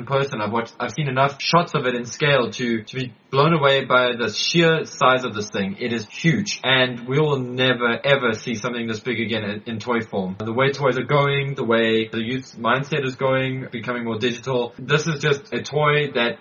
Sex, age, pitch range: male, 20-39, 115-135 Hz